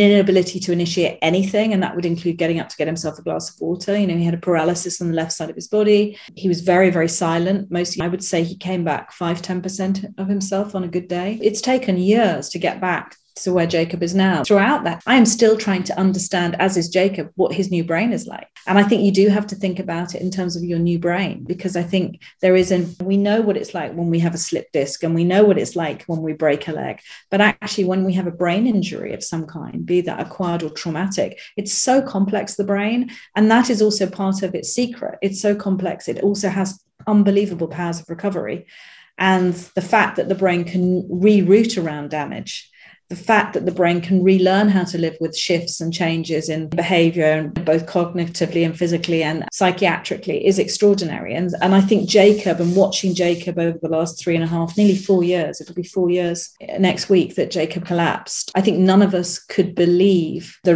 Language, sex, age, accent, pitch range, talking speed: English, female, 40-59, British, 170-195 Hz, 225 wpm